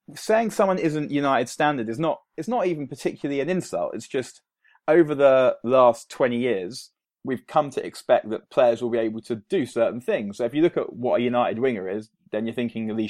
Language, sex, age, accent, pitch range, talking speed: English, male, 20-39, British, 110-145 Hz, 215 wpm